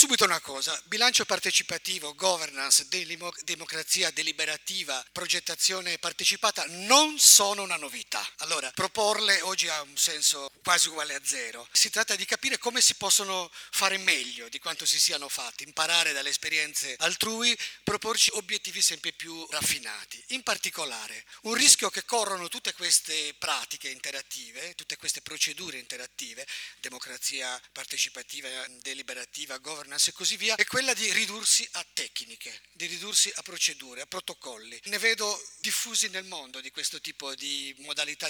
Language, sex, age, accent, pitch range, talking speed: Italian, male, 40-59, native, 155-210 Hz, 140 wpm